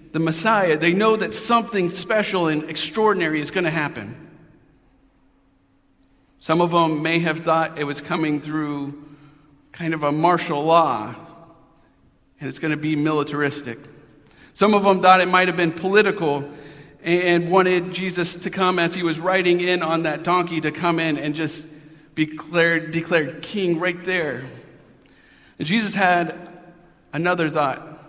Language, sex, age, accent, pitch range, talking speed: English, male, 40-59, American, 150-185 Hz, 145 wpm